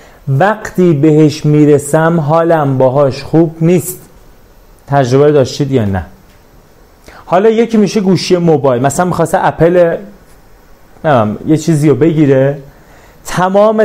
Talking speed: 105 wpm